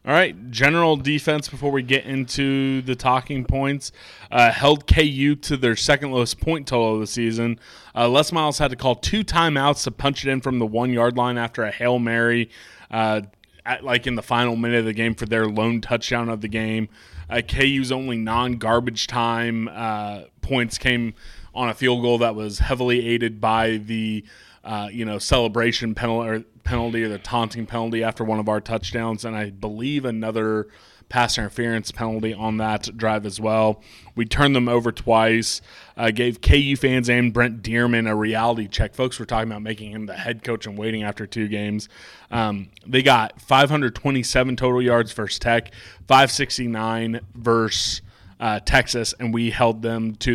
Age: 20-39